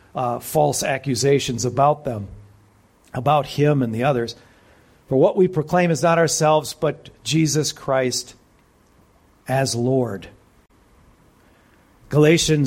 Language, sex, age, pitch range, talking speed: English, male, 50-69, 110-180 Hz, 110 wpm